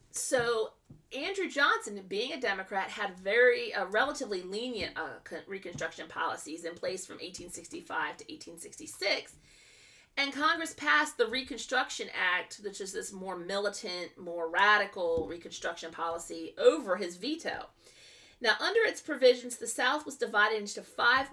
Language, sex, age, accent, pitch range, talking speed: English, female, 40-59, American, 185-270 Hz, 135 wpm